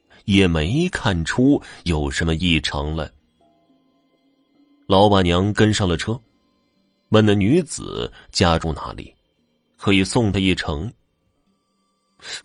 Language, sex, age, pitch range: Chinese, male, 30-49, 85-120 Hz